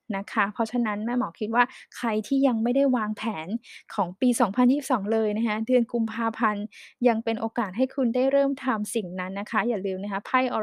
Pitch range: 210-250 Hz